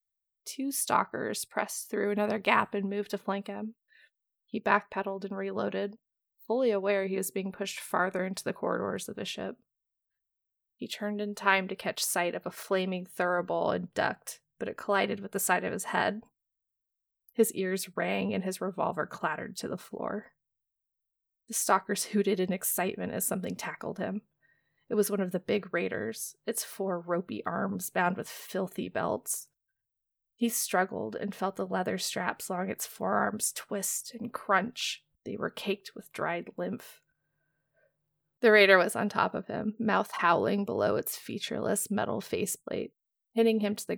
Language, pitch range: English, 190-225 Hz